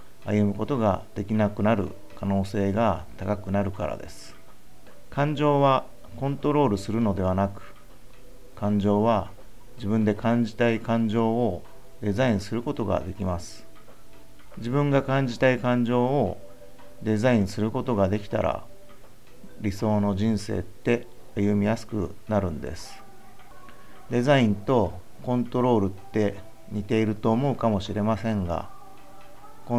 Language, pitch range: Japanese, 100-115 Hz